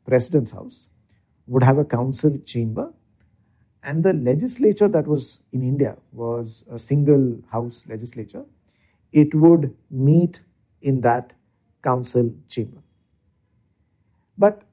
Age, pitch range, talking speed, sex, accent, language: 50-69, 115-150 Hz, 110 wpm, male, Indian, English